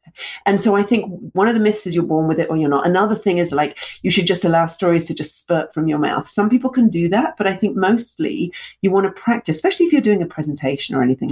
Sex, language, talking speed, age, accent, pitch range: female, English, 275 wpm, 40-59, British, 160-215 Hz